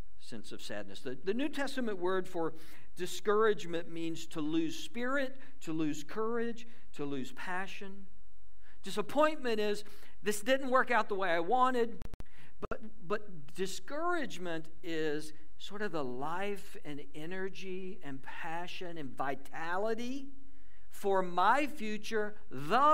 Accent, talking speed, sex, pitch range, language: American, 125 wpm, male, 140-215 Hz, English